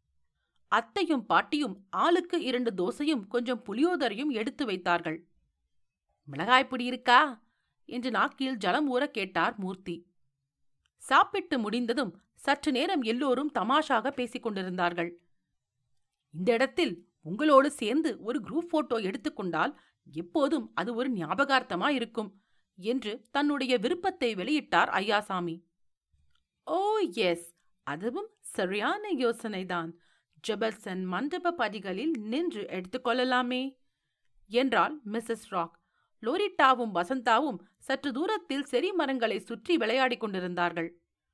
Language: Tamil